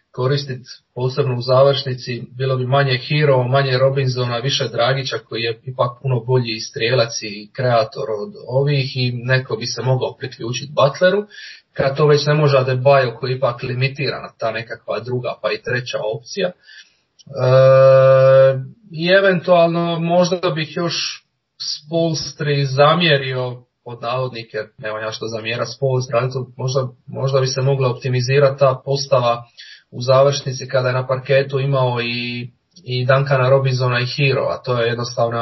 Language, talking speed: English, 145 wpm